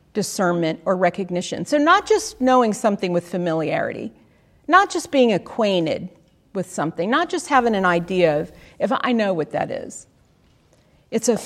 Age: 50-69